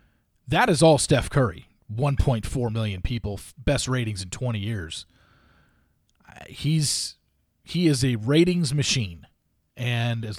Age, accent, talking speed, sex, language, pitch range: 40-59, American, 120 wpm, male, English, 110-150 Hz